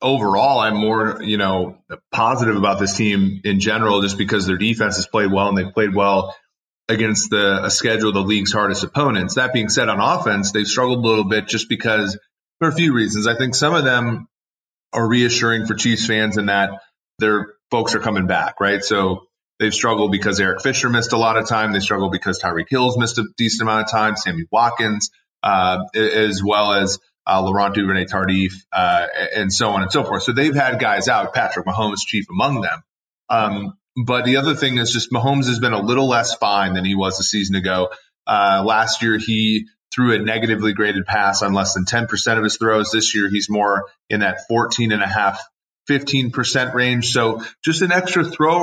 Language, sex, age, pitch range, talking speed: English, male, 30-49, 100-120 Hz, 200 wpm